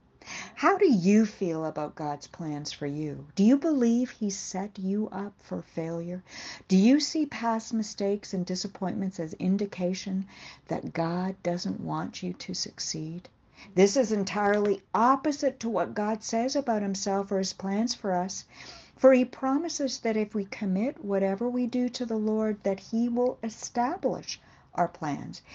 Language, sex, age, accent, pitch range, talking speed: English, female, 60-79, American, 185-250 Hz, 160 wpm